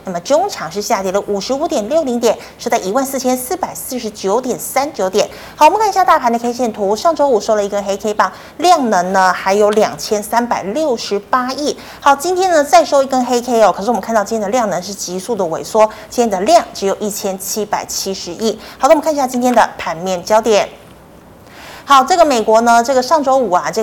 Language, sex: Chinese, female